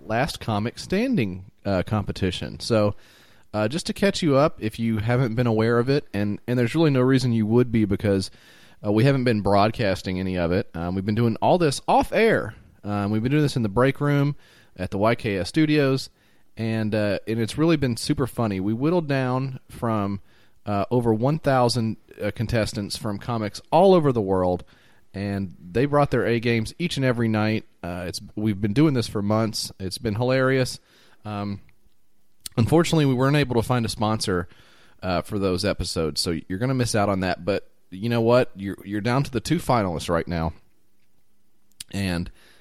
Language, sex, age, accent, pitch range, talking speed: English, male, 30-49, American, 100-125 Hz, 190 wpm